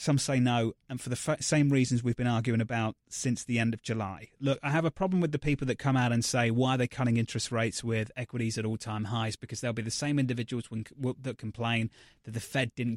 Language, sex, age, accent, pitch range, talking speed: English, male, 30-49, British, 115-140 Hz, 250 wpm